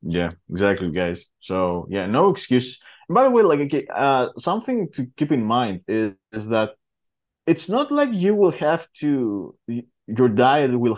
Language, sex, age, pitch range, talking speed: English, male, 20-39, 120-165 Hz, 170 wpm